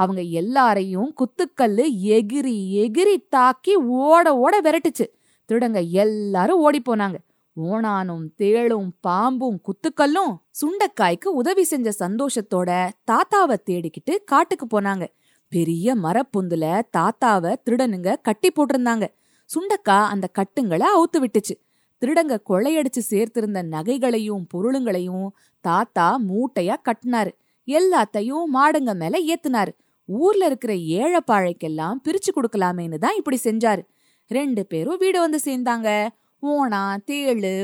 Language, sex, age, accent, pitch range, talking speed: Tamil, female, 20-39, native, 195-290 Hz, 75 wpm